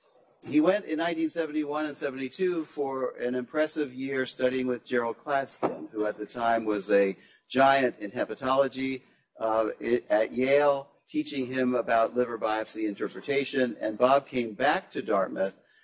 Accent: American